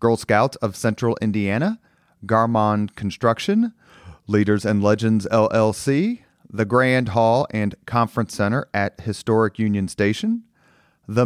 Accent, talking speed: American, 115 wpm